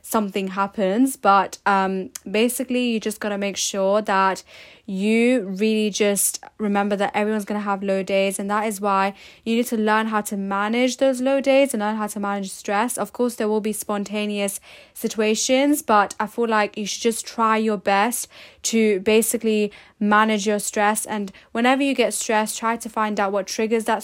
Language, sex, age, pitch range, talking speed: English, female, 10-29, 200-230 Hz, 190 wpm